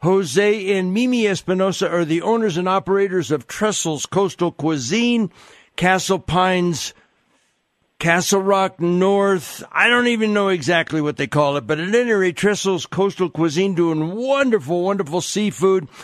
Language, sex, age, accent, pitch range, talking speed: English, male, 60-79, American, 165-205 Hz, 140 wpm